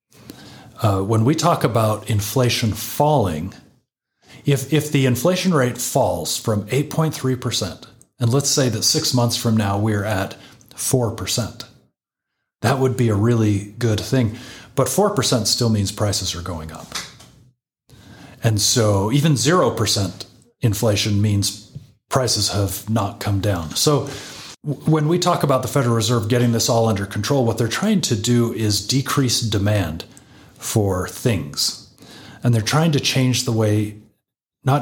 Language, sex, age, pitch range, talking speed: English, male, 30-49, 105-130 Hz, 140 wpm